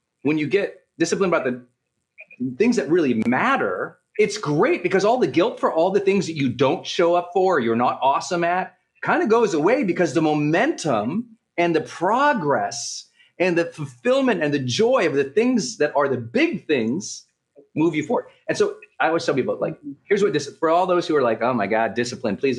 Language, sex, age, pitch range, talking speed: English, male, 40-59, 145-245 Hz, 215 wpm